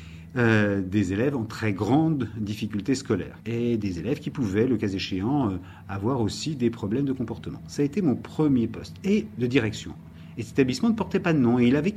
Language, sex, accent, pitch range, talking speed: French, male, French, 100-135 Hz, 215 wpm